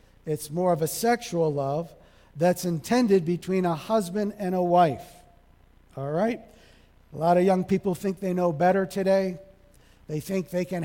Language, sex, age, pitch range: English, male, 50-69, 165-200 Hz